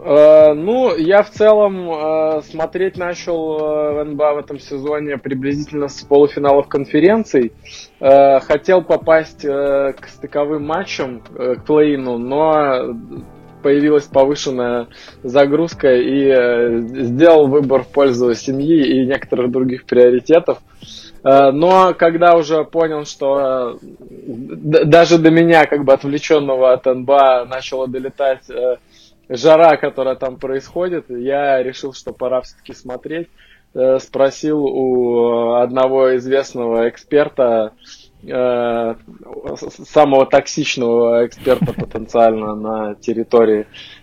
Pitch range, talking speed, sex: 125-150 Hz, 95 wpm, male